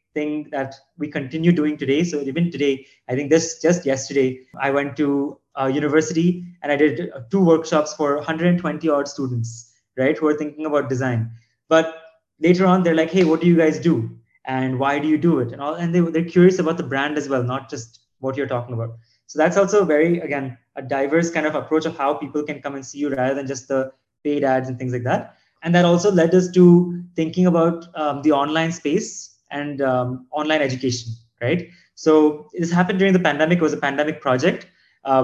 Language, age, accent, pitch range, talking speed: English, 20-39, Indian, 140-170 Hz, 215 wpm